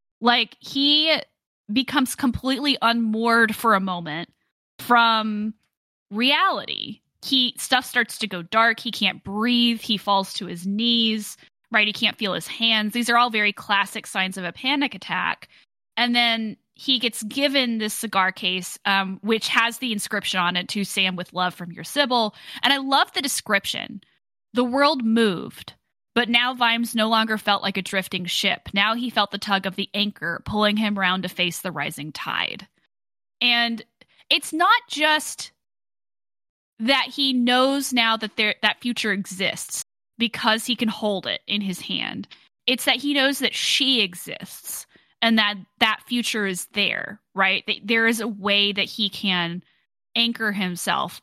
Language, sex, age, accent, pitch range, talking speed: English, female, 10-29, American, 200-245 Hz, 165 wpm